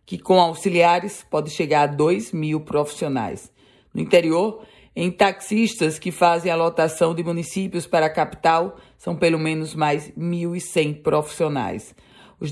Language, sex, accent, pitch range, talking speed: Portuguese, female, Brazilian, 155-185 Hz, 140 wpm